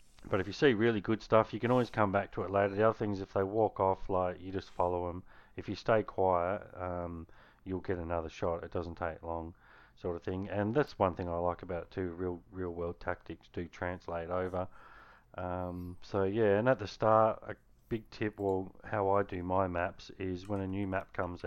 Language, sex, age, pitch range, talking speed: English, male, 30-49, 85-100 Hz, 230 wpm